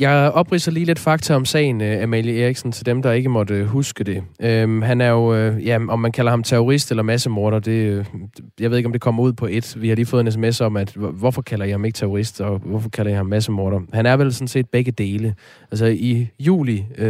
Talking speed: 235 wpm